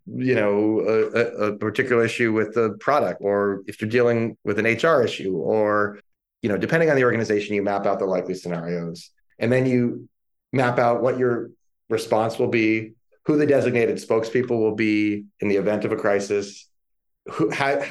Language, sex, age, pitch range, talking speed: English, male, 30-49, 100-125 Hz, 180 wpm